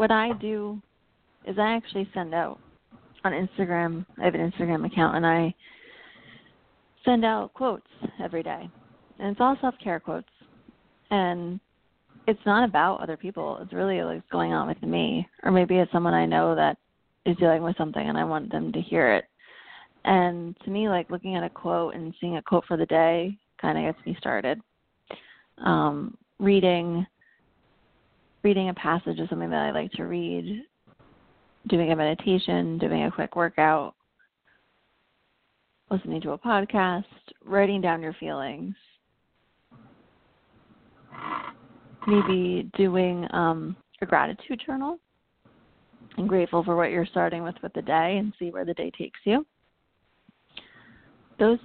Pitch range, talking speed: 165-205 Hz, 150 wpm